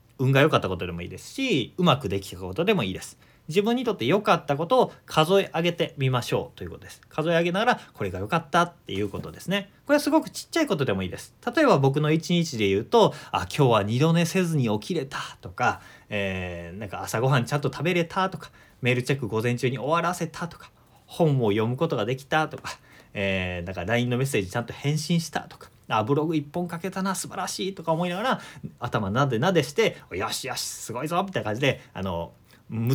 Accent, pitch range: native, 105-175 Hz